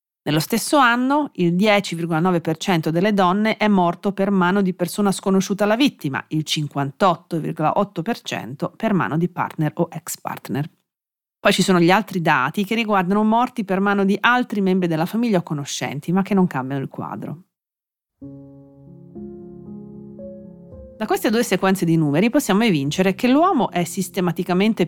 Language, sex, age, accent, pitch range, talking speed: Italian, female, 40-59, native, 155-210 Hz, 145 wpm